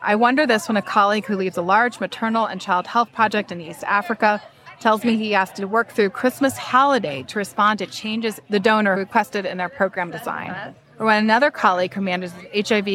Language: English